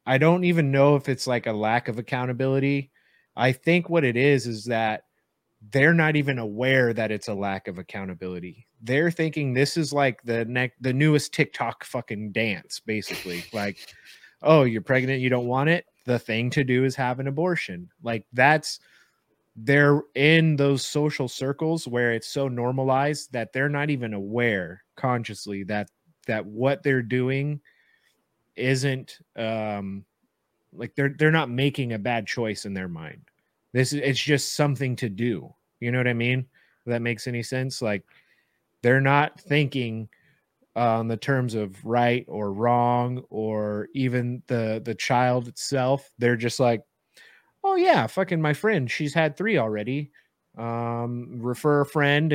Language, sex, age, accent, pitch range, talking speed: English, male, 30-49, American, 115-145 Hz, 165 wpm